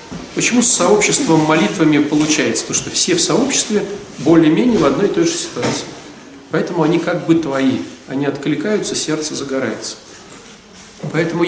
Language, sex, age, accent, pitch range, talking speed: Russian, male, 40-59, native, 150-210 Hz, 140 wpm